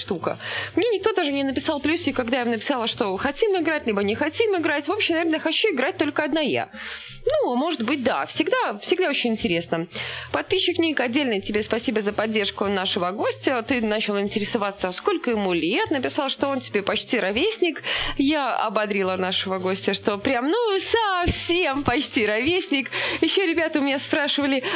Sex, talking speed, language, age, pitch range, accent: female, 165 wpm, Russian, 20-39, 245-365 Hz, native